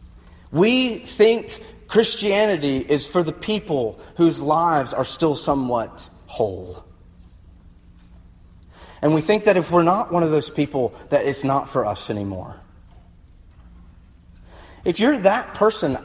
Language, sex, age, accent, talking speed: English, male, 30-49, American, 125 wpm